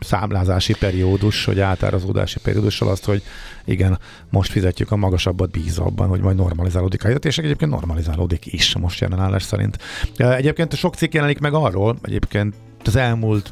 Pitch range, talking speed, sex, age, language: 95-115 Hz, 150 wpm, male, 50-69, Hungarian